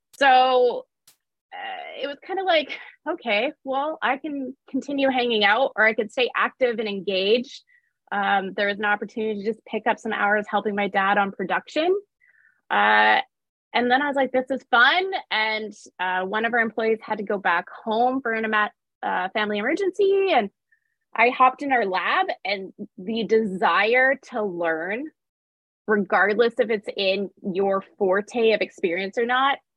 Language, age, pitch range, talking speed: English, 20-39, 195-255 Hz, 165 wpm